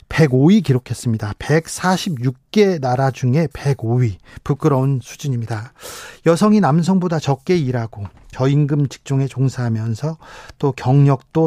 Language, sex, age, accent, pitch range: Korean, male, 40-59, native, 130-185 Hz